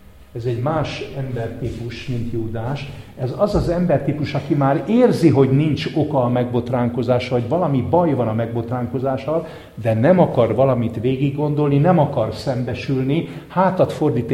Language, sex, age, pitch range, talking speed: English, male, 50-69, 110-140 Hz, 140 wpm